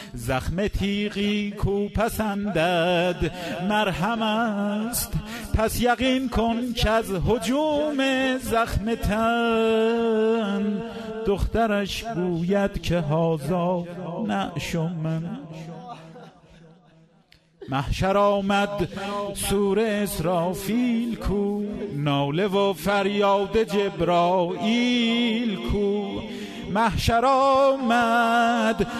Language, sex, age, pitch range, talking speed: Persian, male, 50-69, 195-230 Hz, 65 wpm